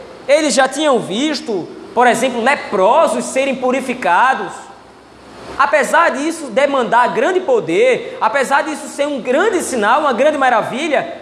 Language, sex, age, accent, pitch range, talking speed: Portuguese, male, 20-39, Brazilian, 215-290 Hz, 125 wpm